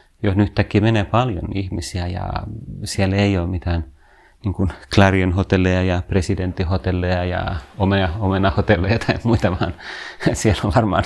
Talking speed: 130 wpm